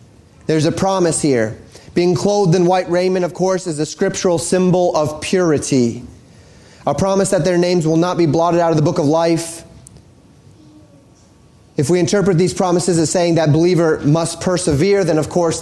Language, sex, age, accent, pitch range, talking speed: English, male, 30-49, American, 150-185 Hz, 175 wpm